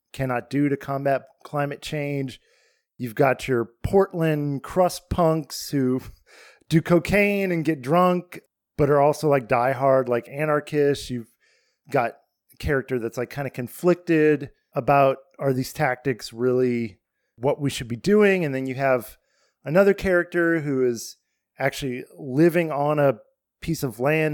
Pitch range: 130-165 Hz